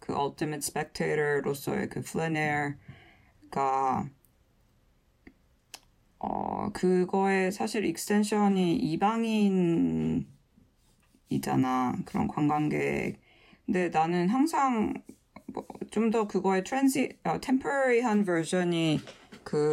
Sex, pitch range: female, 140-190 Hz